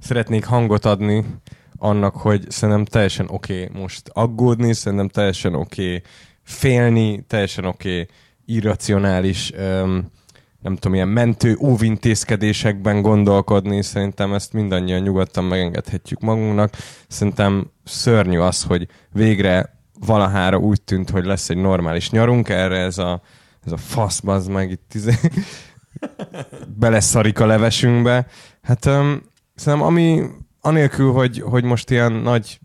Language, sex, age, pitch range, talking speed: Hungarian, male, 20-39, 95-115 Hz, 125 wpm